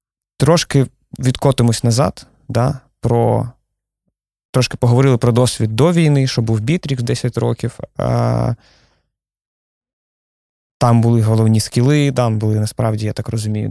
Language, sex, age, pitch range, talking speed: Ukrainian, male, 20-39, 110-130 Hz, 120 wpm